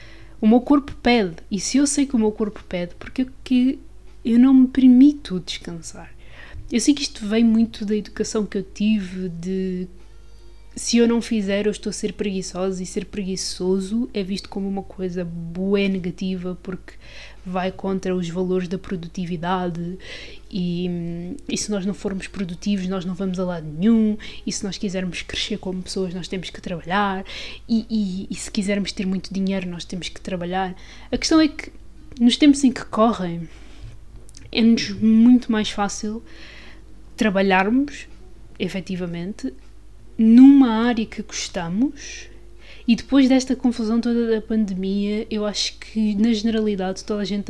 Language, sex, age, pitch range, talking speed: Portuguese, female, 20-39, 185-230 Hz, 165 wpm